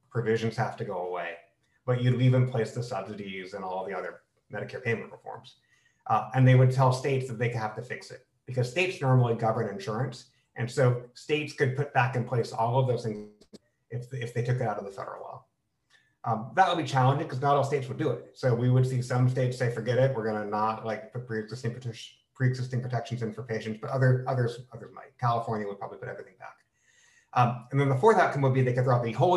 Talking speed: 235 wpm